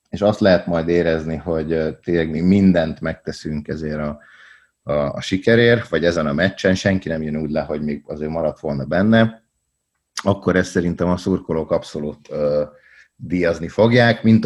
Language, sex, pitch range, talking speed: Hungarian, male, 75-95 Hz, 170 wpm